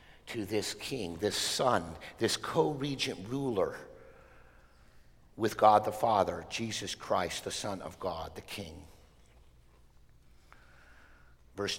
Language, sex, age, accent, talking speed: English, male, 50-69, American, 105 wpm